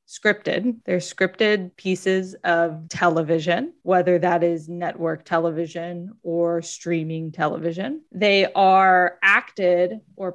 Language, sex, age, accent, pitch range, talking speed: English, female, 20-39, American, 175-215 Hz, 105 wpm